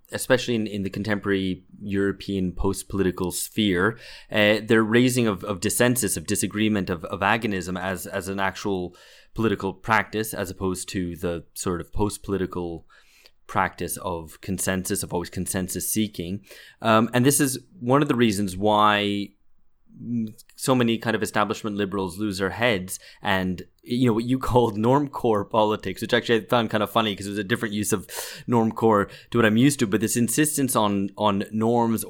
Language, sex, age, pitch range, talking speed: English, male, 20-39, 95-115 Hz, 170 wpm